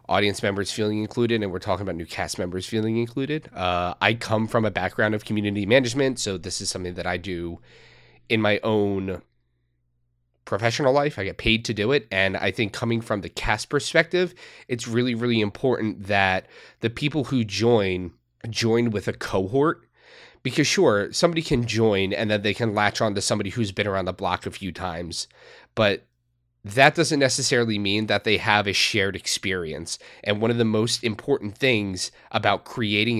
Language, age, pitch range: English, 30-49, 95-120 Hz